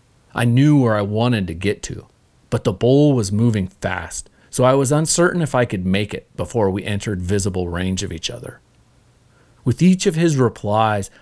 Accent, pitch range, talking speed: American, 100-120 Hz, 195 wpm